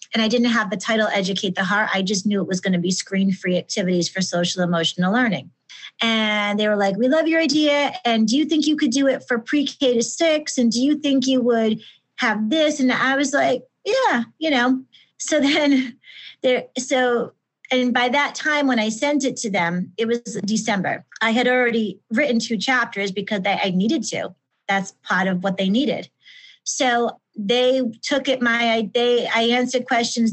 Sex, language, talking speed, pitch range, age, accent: female, English, 195 wpm, 200-260 Hz, 30-49, American